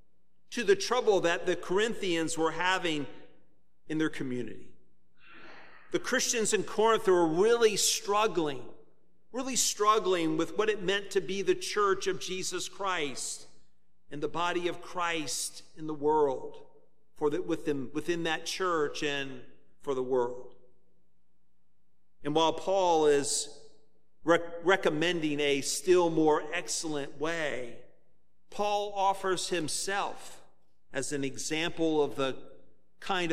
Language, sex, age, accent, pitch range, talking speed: English, male, 50-69, American, 140-185 Hz, 120 wpm